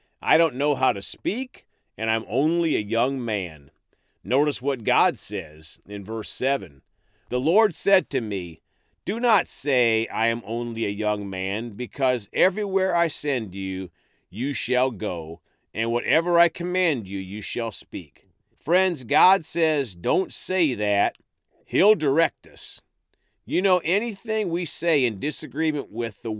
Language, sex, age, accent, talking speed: English, male, 40-59, American, 150 wpm